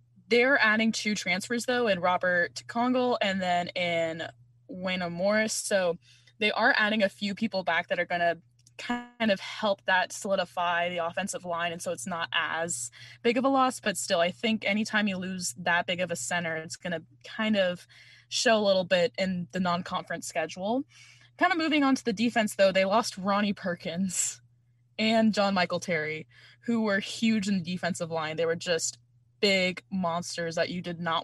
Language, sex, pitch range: English, female, 170-215 Hz